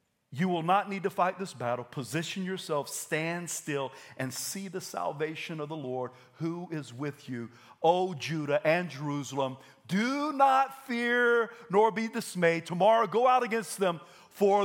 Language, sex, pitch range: English, male, 155-230 Hz